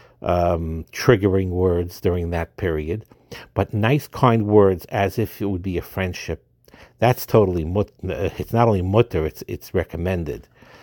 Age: 60-79